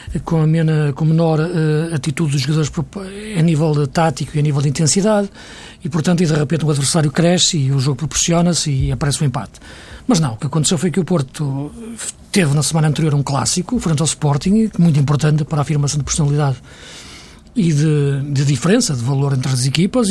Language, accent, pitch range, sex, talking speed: Portuguese, Portuguese, 145-175 Hz, male, 195 wpm